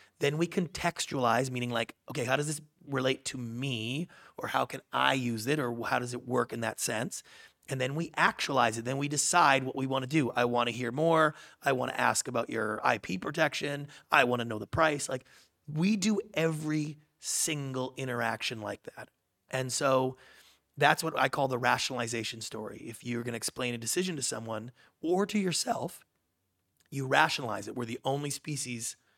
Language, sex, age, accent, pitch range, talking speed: English, male, 30-49, American, 120-150 Hz, 195 wpm